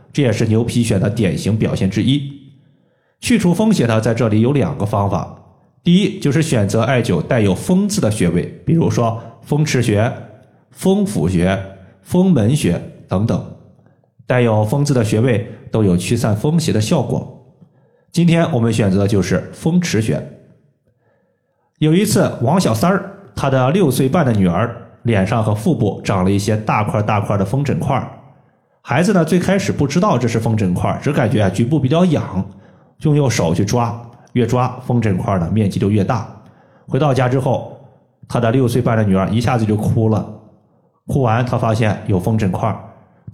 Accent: native